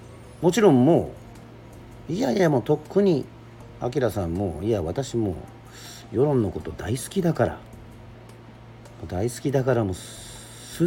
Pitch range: 110-125 Hz